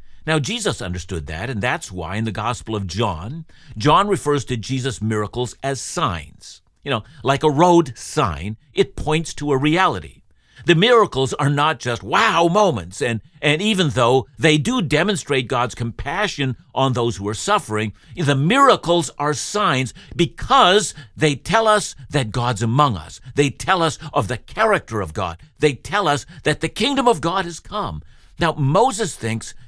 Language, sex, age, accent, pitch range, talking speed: English, male, 60-79, American, 100-150 Hz, 170 wpm